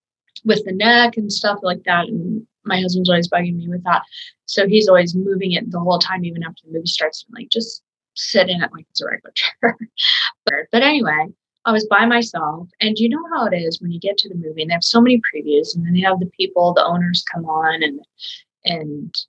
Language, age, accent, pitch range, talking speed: English, 20-39, American, 175-215 Hz, 235 wpm